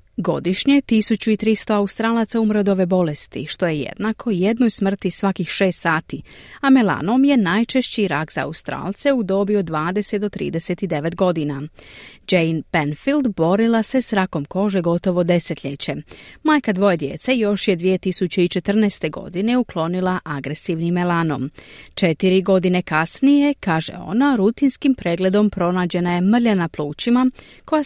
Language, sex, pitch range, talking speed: Croatian, female, 175-220 Hz, 125 wpm